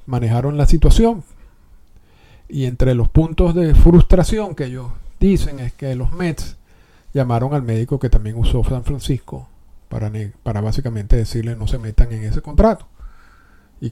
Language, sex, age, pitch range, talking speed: Spanish, male, 50-69, 115-150 Hz, 150 wpm